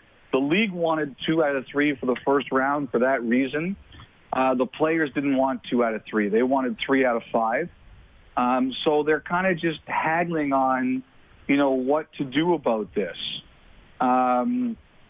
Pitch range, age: 130-155 Hz, 40-59